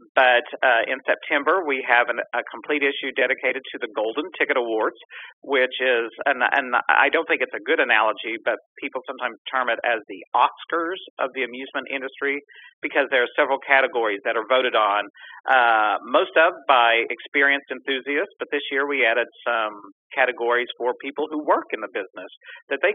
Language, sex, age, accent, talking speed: English, male, 50-69, American, 180 wpm